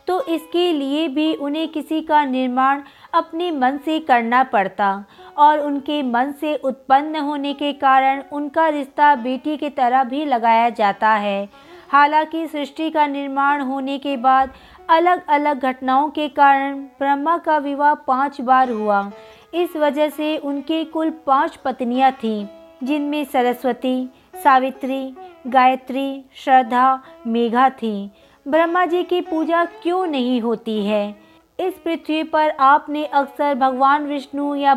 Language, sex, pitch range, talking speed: Hindi, female, 255-305 Hz, 135 wpm